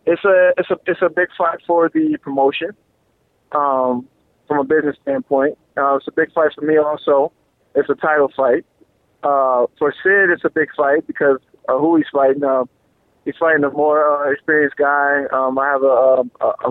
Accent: American